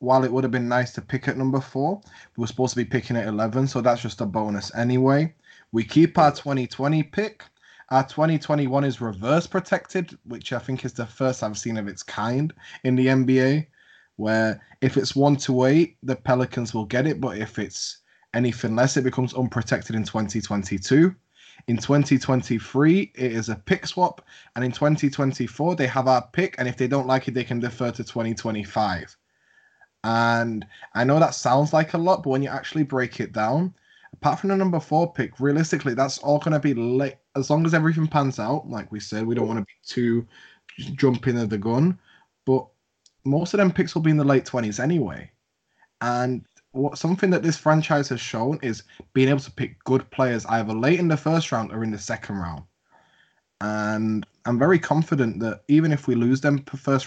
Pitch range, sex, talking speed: 115-145 Hz, male, 200 wpm